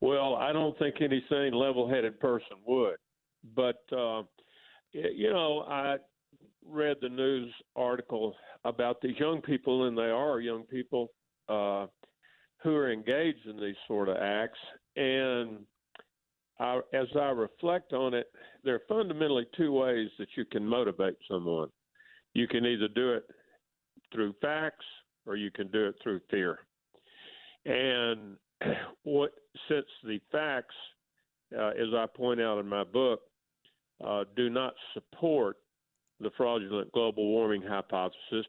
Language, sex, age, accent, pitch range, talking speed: English, male, 50-69, American, 115-145 Hz, 140 wpm